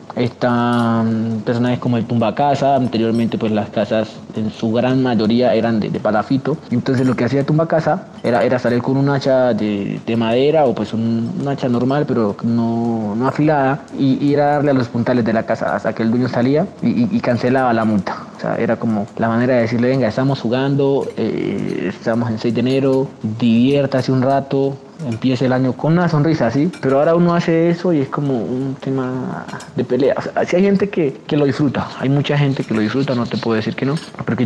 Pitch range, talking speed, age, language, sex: 115-140 Hz, 220 wpm, 30-49, Spanish, male